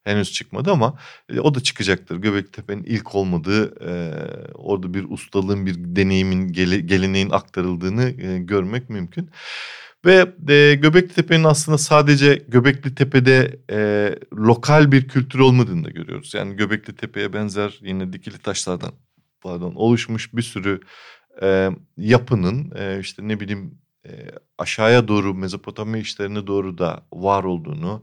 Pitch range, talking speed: 95-125 Hz, 135 wpm